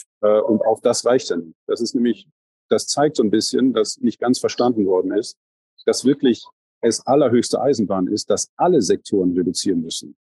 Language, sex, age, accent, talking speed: German, male, 40-59, German, 190 wpm